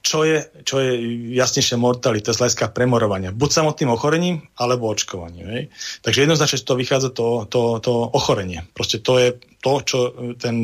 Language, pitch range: Slovak, 115-140 Hz